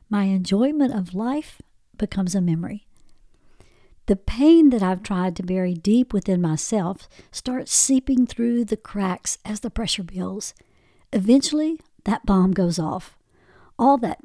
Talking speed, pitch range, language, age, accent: 140 wpm, 185-245 Hz, English, 60-79, American